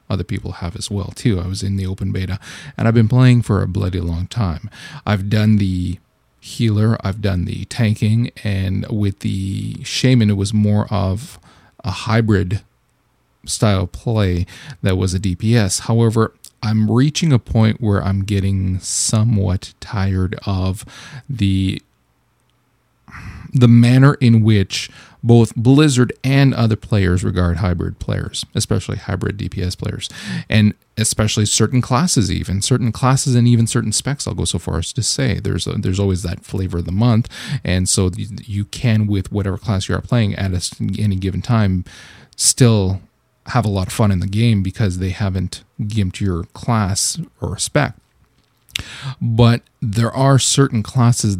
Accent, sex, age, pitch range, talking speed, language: American, male, 40-59, 95-115 Hz, 160 wpm, English